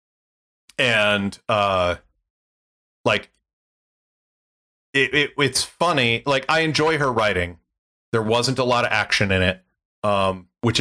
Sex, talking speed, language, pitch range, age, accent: male, 120 wpm, English, 90-120 Hz, 40-59, American